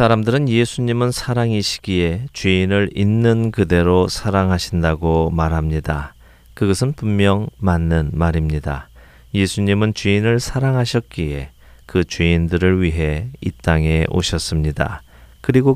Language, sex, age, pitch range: Korean, male, 40-59, 80-110 Hz